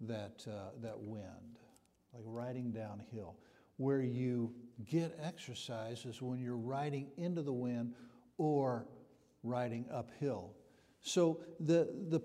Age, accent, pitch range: 60-79, American, 120-150 Hz